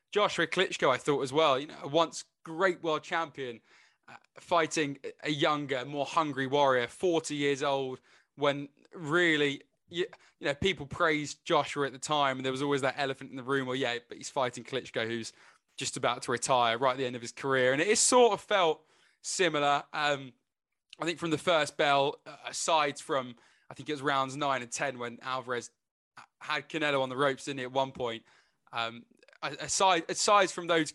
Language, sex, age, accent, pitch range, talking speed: English, male, 20-39, British, 135-160 Hz, 200 wpm